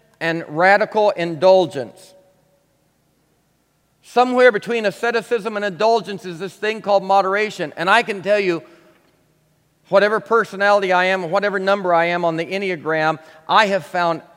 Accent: American